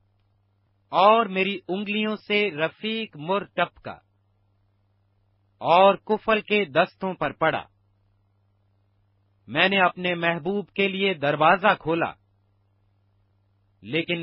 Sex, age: male, 40-59